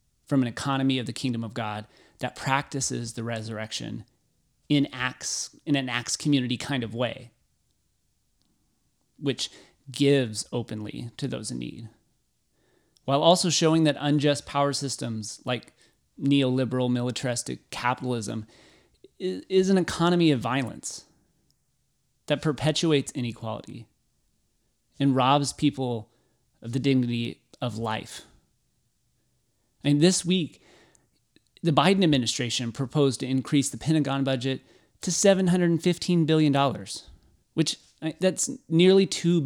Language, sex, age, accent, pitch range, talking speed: English, male, 30-49, American, 120-155 Hz, 110 wpm